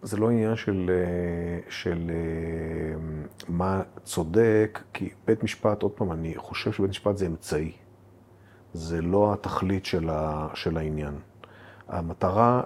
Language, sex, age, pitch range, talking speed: Hebrew, male, 40-59, 90-110 Hz, 115 wpm